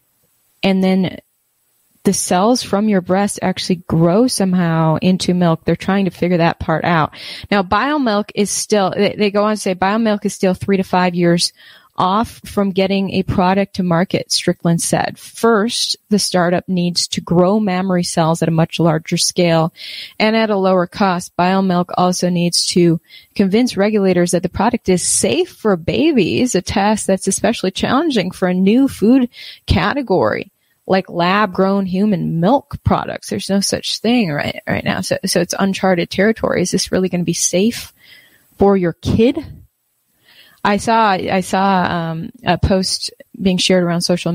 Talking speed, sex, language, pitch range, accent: 165 wpm, female, English, 175-200 Hz, American